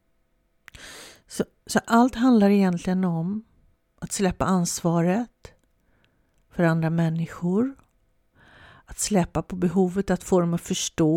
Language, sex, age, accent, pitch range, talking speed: Swedish, female, 50-69, native, 160-200 Hz, 115 wpm